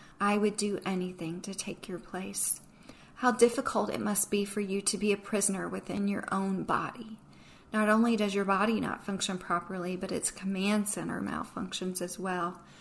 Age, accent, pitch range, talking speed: 40-59, American, 185-210 Hz, 180 wpm